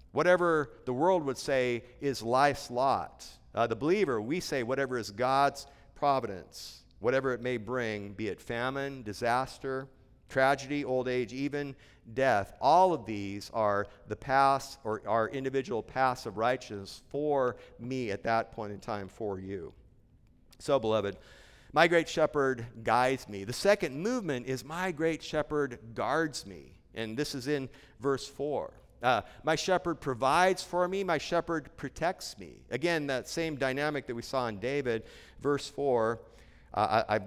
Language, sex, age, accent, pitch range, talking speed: English, male, 50-69, American, 115-150 Hz, 155 wpm